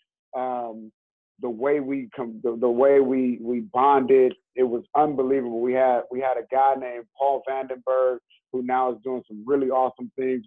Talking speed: 180 wpm